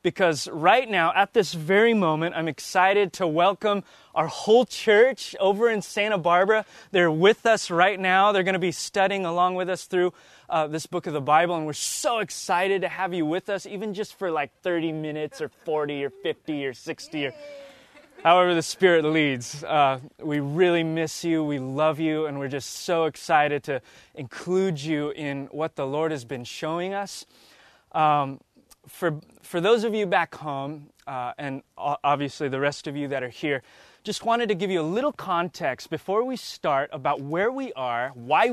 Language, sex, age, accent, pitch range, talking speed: English, male, 20-39, American, 145-190 Hz, 190 wpm